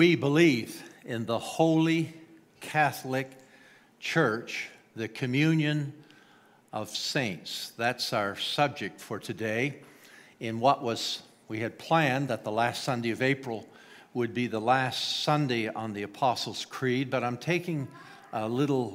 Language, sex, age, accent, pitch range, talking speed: English, male, 60-79, American, 115-145 Hz, 135 wpm